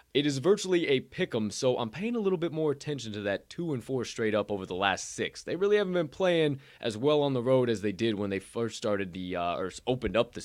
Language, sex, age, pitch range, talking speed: English, male, 20-39, 100-135 Hz, 275 wpm